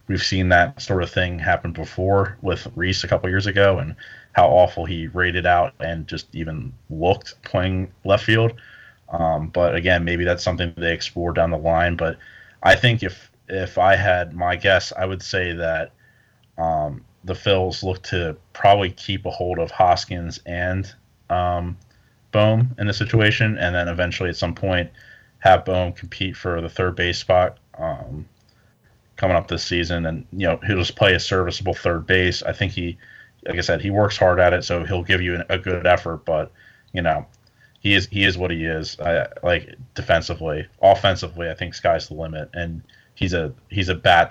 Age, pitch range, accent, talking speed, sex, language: 30-49, 85-100 Hz, American, 190 wpm, male, English